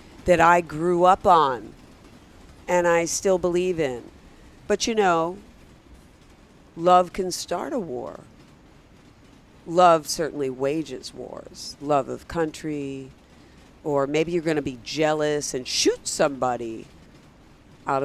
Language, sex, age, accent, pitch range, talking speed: English, female, 50-69, American, 140-185 Hz, 115 wpm